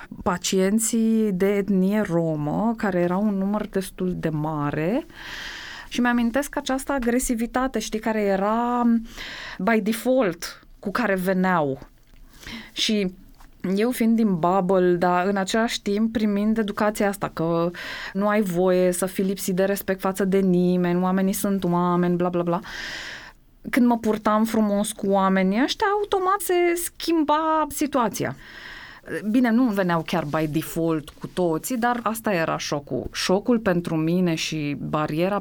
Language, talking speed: Romanian, 135 wpm